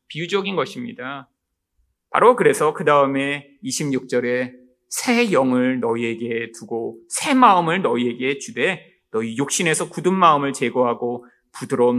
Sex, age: male, 30-49